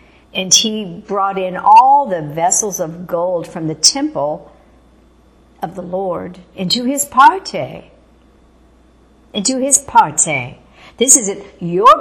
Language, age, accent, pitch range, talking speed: English, 60-79, American, 165-210 Hz, 120 wpm